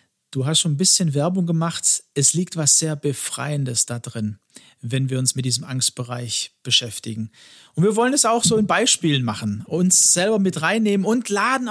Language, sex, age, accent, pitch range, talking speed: German, male, 40-59, German, 145-190 Hz, 185 wpm